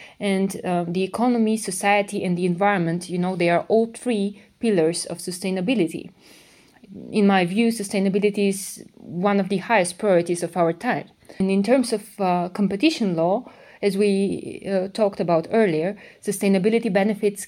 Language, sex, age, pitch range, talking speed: English, female, 20-39, 180-215 Hz, 155 wpm